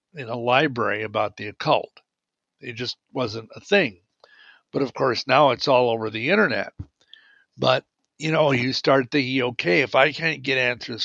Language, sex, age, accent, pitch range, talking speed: English, male, 60-79, American, 120-155 Hz, 175 wpm